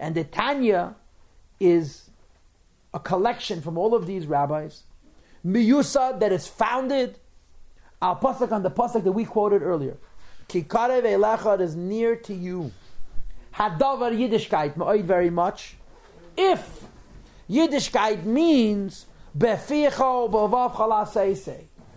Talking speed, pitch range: 105 wpm, 175-230 Hz